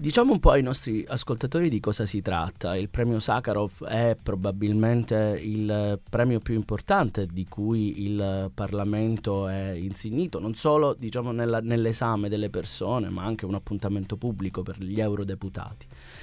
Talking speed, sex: 150 wpm, male